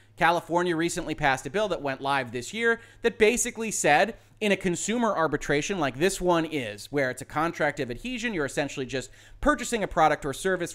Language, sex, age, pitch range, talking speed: English, male, 30-49, 150-215 Hz, 195 wpm